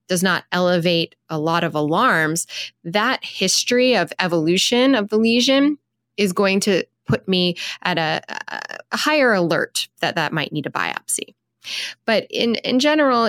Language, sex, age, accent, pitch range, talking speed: English, female, 20-39, American, 170-220 Hz, 155 wpm